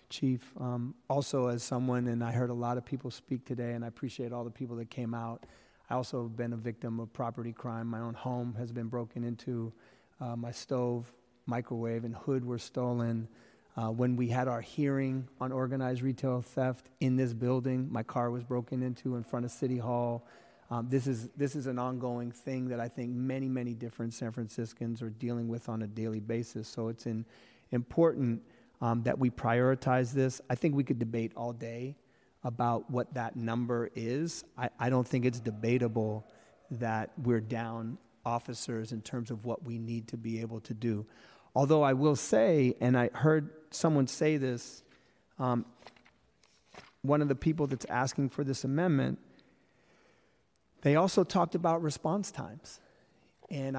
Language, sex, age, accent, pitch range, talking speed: English, male, 30-49, American, 115-135 Hz, 180 wpm